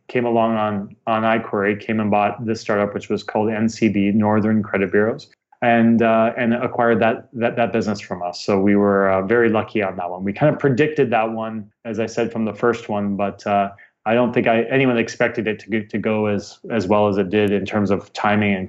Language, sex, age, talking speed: English, male, 30-49, 235 wpm